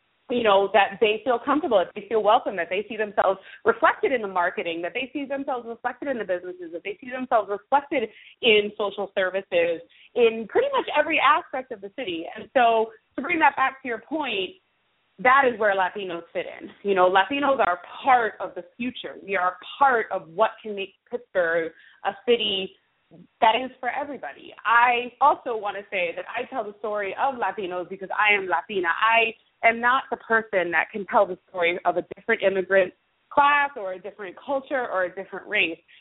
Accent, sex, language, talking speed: American, female, English, 195 wpm